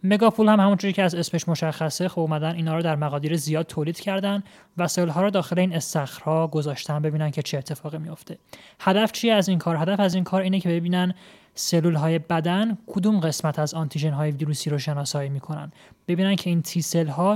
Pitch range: 155-185 Hz